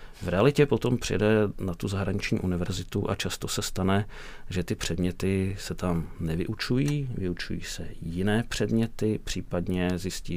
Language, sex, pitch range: Czech, male, 85-100 Hz